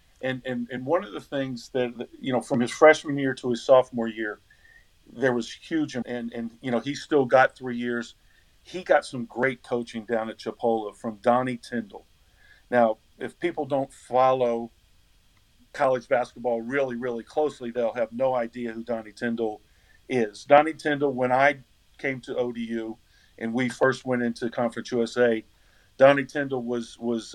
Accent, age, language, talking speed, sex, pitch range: American, 50-69, English, 170 wpm, male, 115-130 Hz